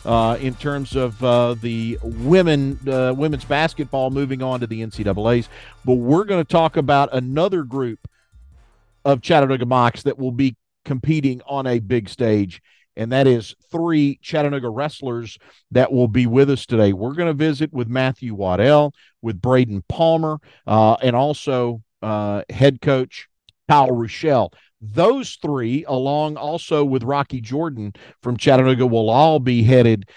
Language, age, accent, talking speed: English, 50-69, American, 155 wpm